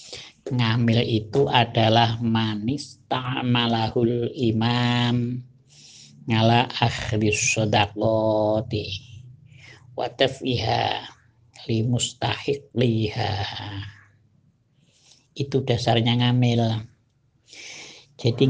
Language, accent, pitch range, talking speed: Indonesian, native, 110-125 Hz, 45 wpm